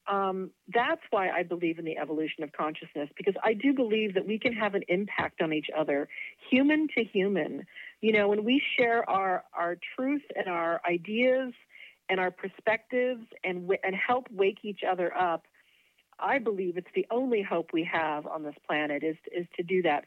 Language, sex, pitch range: English, female, 170-215 Hz